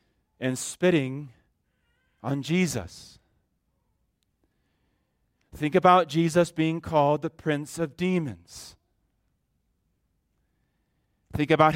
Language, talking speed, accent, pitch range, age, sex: English, 75 wpm, American, 130-175 Hz, 40-59, male